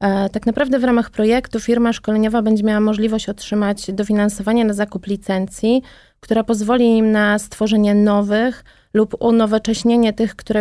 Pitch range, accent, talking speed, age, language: 200-225 Hz, native, 140 wpm, 20-39, Polish